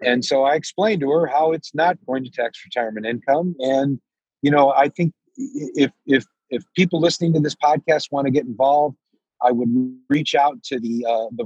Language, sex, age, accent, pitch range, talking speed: English, male, 40-59, American, 125-145 Hz, 205 wpm